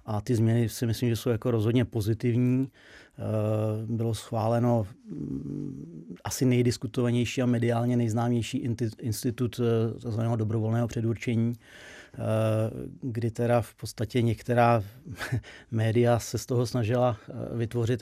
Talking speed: 100 wpm